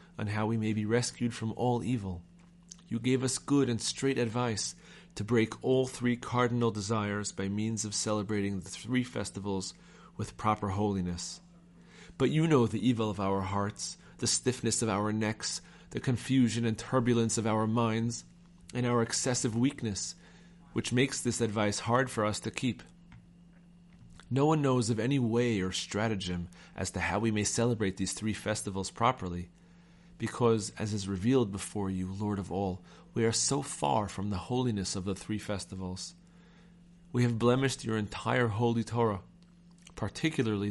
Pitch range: 105-130 Hz